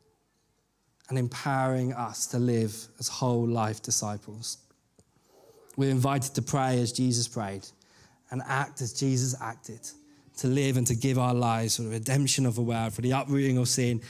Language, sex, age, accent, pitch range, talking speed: English, male, 20-39, British, 120-145 Hz, 165 wpm